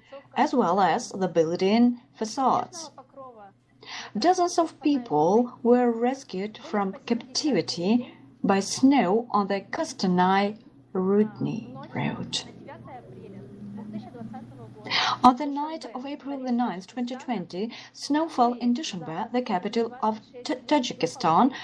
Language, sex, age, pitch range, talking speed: English, female, 40-59, 190-260 Hz, 95 wpm